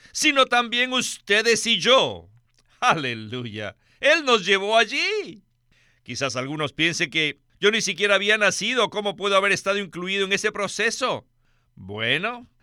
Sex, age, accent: male, 50-69, Mexican